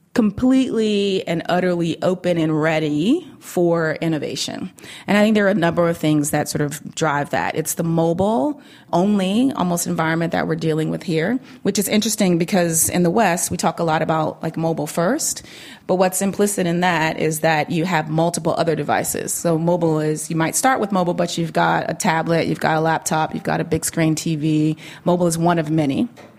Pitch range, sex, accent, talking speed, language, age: 155-180 Hz, female, American, 195 wpm, English, 30-49